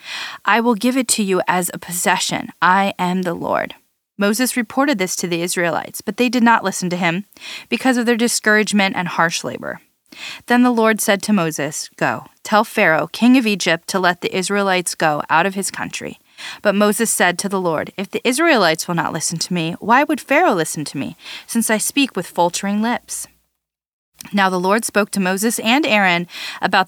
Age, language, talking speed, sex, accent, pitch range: 30-49, English, 200 wpm, female, American, 175-230 Hz